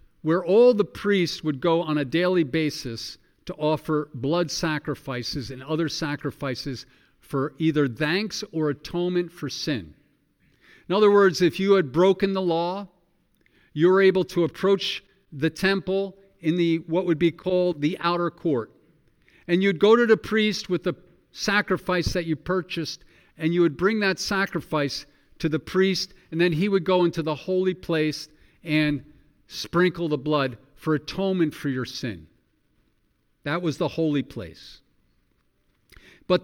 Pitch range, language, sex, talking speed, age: 155-190 Hz, English, male, 155 wpm, 50-69